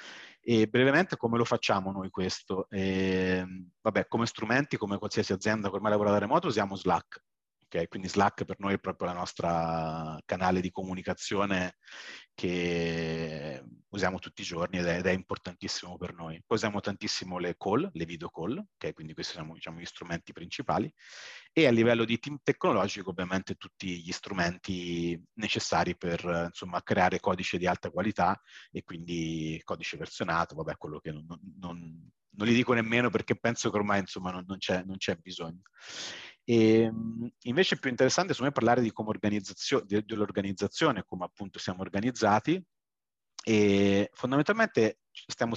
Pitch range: 90-115 Hz